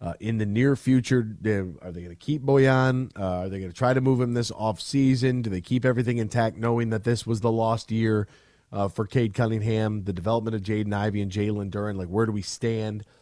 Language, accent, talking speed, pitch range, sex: English, American, 235 wpm, 105-145 Hz, male